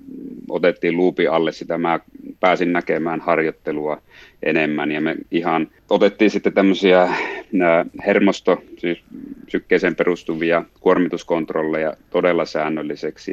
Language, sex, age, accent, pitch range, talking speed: Finnish, male, 30-49, native, 80-95 Hz, 95 wpm